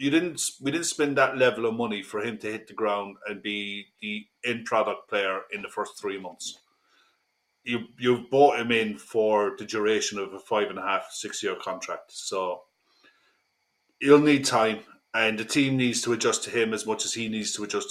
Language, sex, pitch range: English, male, 105-130 Hz